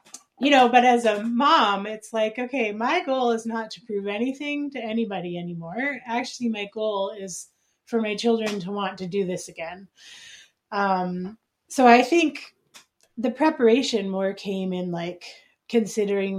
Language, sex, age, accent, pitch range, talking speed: English, female, 30-49, American, 190-240 Hz, 155 wpm